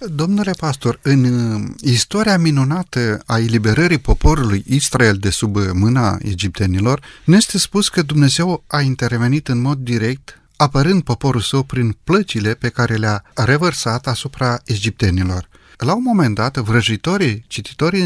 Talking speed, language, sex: 135 wpm, Romanian, male